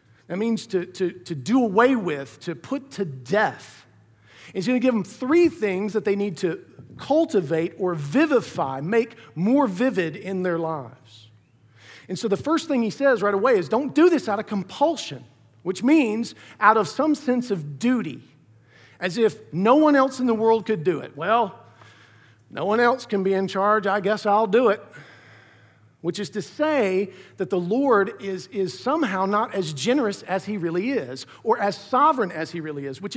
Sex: male